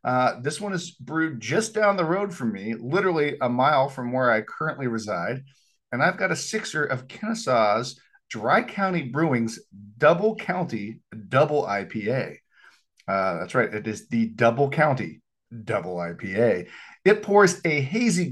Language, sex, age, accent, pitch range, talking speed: English, male, 40-59, American, 120-175 Hz, 155 wpm